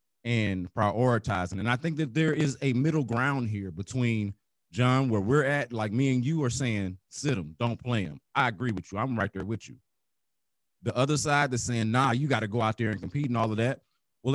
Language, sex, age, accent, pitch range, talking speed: English, male, 30-49, American, 115-150 Hz, 230 wpm